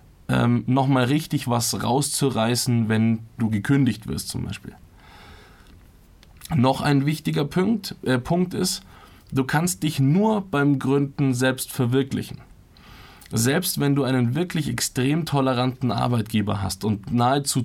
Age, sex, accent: 20-39, male, German